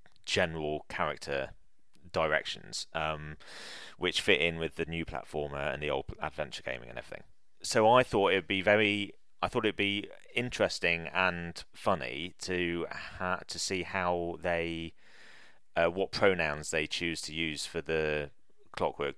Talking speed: 155 wpm